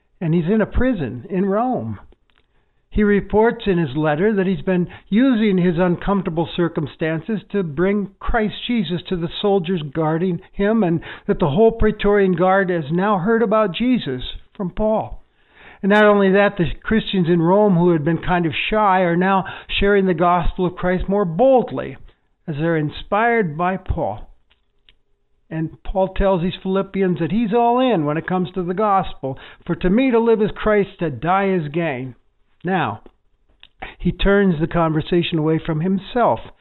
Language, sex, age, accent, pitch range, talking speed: English, male, 60-79, American, 165-205 Hz, 170 wpm